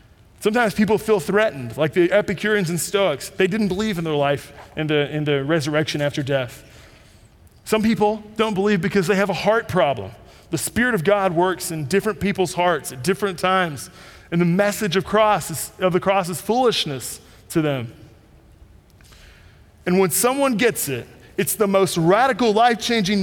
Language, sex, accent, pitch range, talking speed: English, male, American, 150-205 Hz, 165 wpm